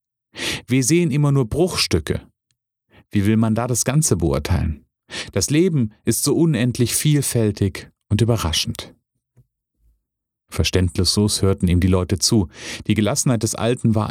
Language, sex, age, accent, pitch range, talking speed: German, male, 40-59, German, 95-120 Hz, 130 wpm